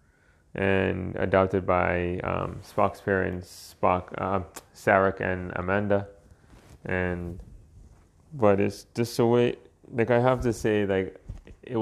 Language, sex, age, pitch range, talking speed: English, male, 30-49, 85-110 Hz, 120 wpm